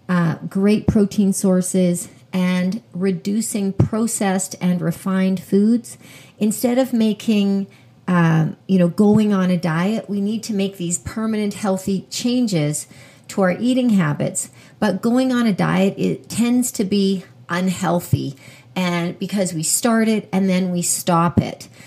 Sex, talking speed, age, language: female, 145 wpm, 40-59, English